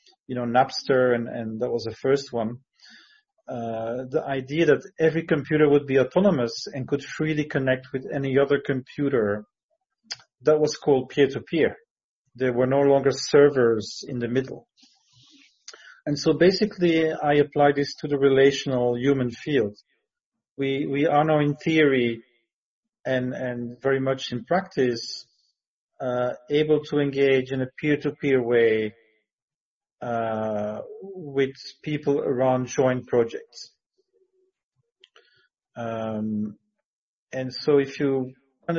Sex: male